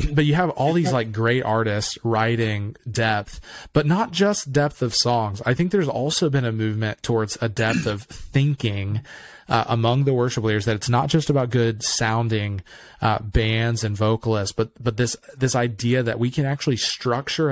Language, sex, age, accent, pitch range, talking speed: English, male, 20-39, American, 110-125 Hz, 185 wpm